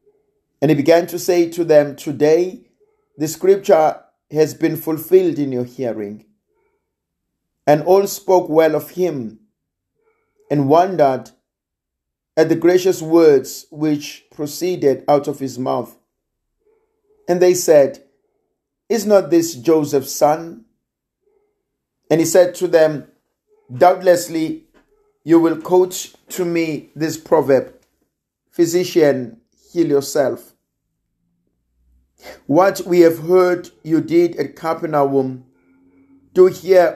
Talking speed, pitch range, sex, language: 110 wpm, 135-180 Hz, male, English